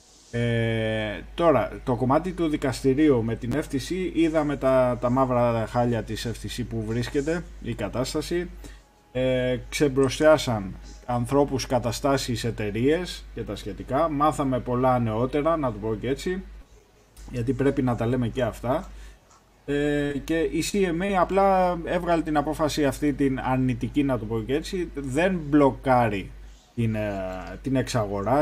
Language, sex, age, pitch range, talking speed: Greek, male, 20-39, 120-150 Hz, 135 wpm